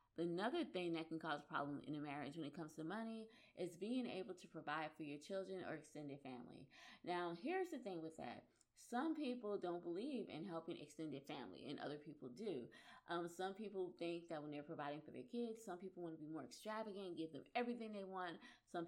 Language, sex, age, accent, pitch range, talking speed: English, female, 20-39, American, 155-205 Hz, 215 wpm